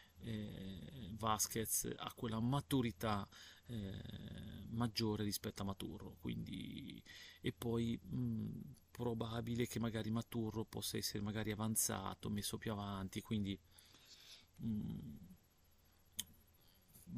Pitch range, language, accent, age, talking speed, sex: 95-125 Hz, Italian, native, 40-59, 95 wpm, male